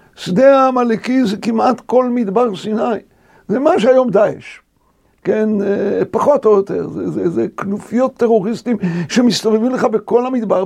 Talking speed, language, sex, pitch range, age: 135 wpm, Hebrew, male, 215-270 Hz, 60-79